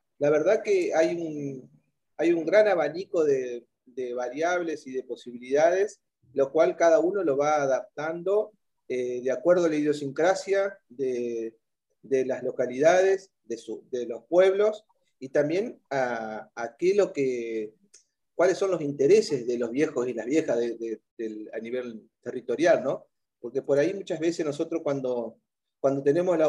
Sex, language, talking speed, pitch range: male, Spanish, 165 wpm, 125-180 Hz